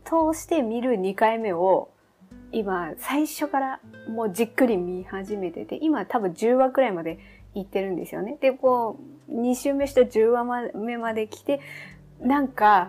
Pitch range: 185-275 Hz